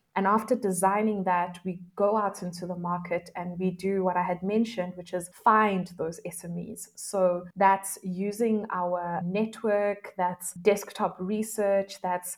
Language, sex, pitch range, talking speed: English, female, 180-210 Hz, 150 wpm